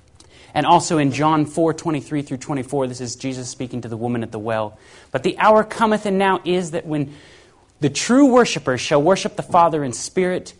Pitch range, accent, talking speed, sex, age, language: 125-190 Hz, American, 205 wpm, male, 30-49, Danish